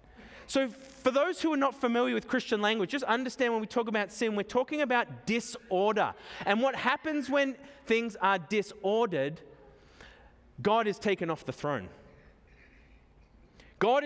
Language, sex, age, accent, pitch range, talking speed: English, male, 20-39, Australian, 200-255 Hz, 150 wpm